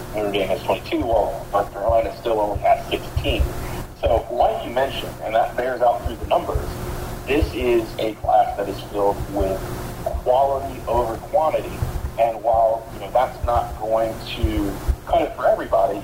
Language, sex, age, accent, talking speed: English, male, 40-59, American, 165 wpm